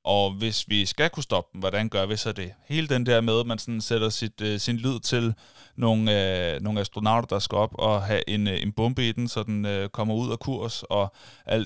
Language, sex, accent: Danish, male, native